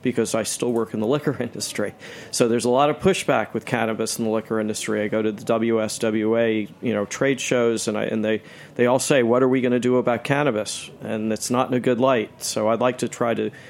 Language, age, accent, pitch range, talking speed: English, 40-59, American, 110-125 Hz, 250 wpm